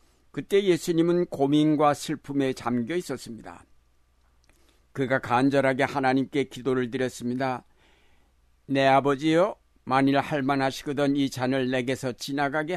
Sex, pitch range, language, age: male, 95-150 Hz, Korean, 60-79